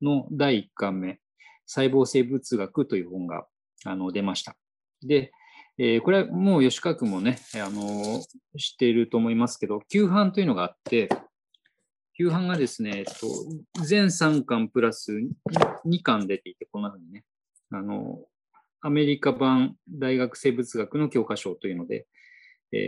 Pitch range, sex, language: 110-165 Hz, male, Japanese